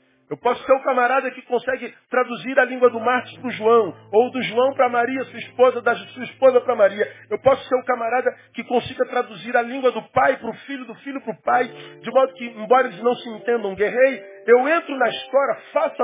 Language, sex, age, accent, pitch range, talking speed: Portuguese, male, 40-59, Brazilian, 235-285 Hz, 240 wpm